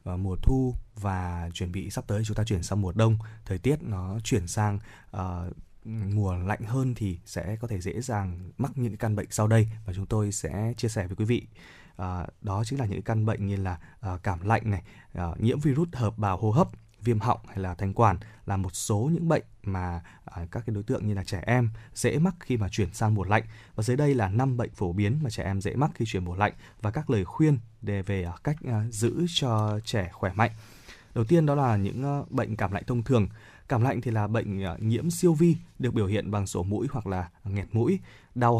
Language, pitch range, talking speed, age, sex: Vietnamese, 100-120 Hz, 230 wpm, 20-39, male